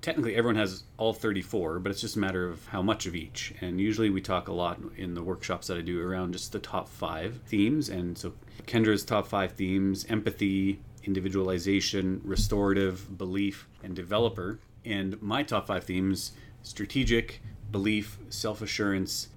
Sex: male